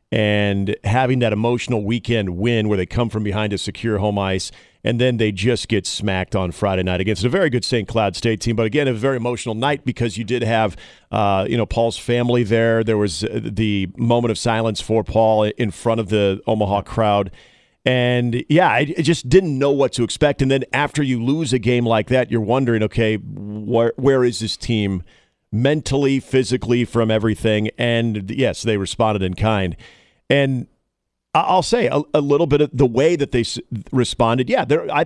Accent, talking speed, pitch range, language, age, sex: American, 195 wpm, 105-125 Hz, English, 40-59, male